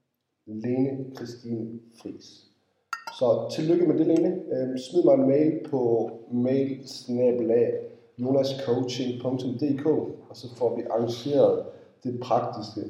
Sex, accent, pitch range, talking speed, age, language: male, native, 115-150 Hz, 100 wpm, 30-49, Danish